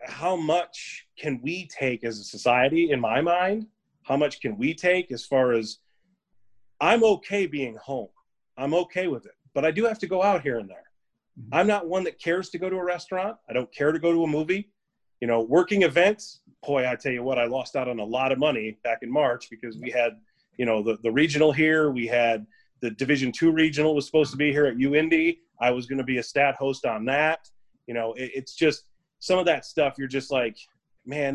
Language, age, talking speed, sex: English, 30-49, 230 wpm, male